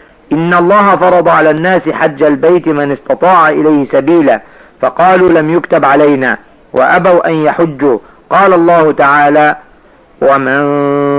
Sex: male